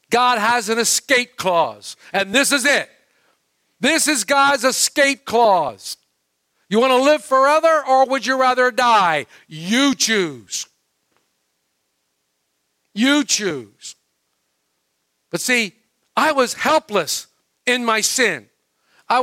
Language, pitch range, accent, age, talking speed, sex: English, 200-290 Hz, American, 50-69, 115 wpm, male